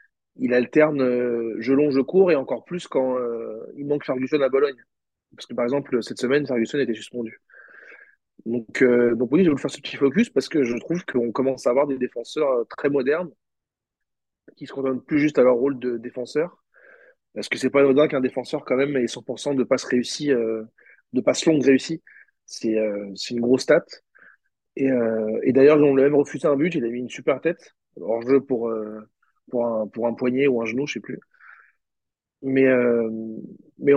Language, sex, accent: French, male, French